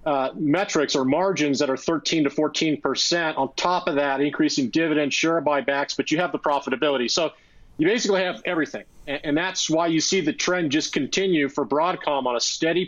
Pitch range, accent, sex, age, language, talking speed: 140-175 Hz, American, male, 40-59, English, 200 wpm